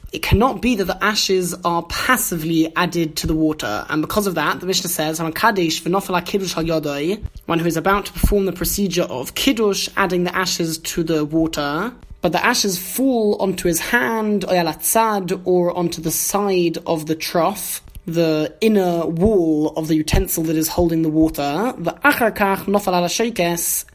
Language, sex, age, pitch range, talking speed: English, male, 20-39, 165-200 Hz, 155 wpm